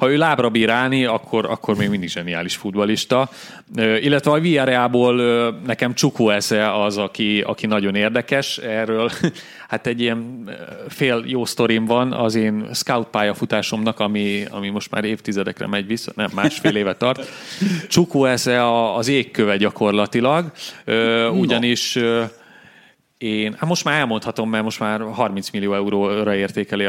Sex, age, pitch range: male, 30-49, 100-130 Hz